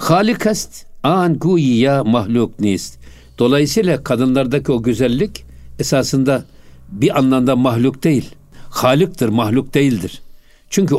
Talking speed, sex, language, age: 95 wpm, male, Turkish, 60-79